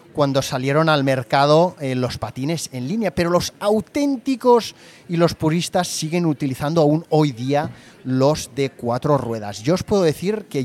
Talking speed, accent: 165 wpm, Spanish